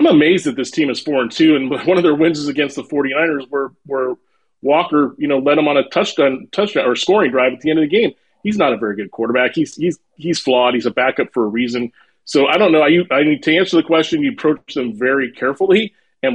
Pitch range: 120-155 Hz